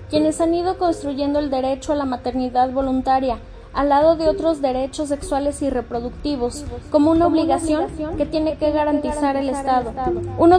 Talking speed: 160 wpm